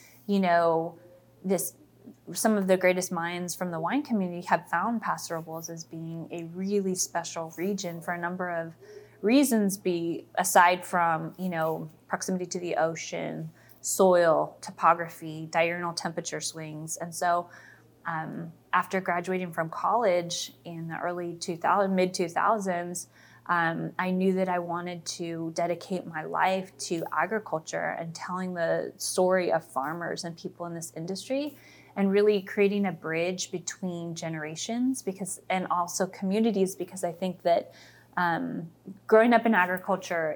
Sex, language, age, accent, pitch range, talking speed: female, English, 20-39, American, 165-185 Hz, 145 wpm